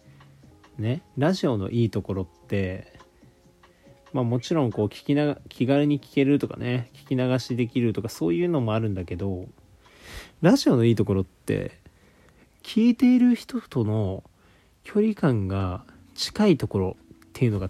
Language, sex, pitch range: Japanese, male, 100-140 Hz